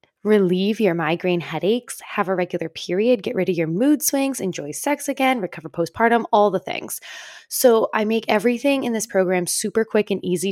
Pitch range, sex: 180-230 Hz, female